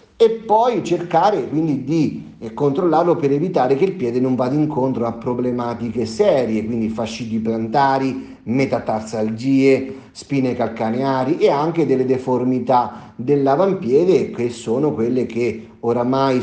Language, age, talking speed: Italian, 40-59, 120 wpm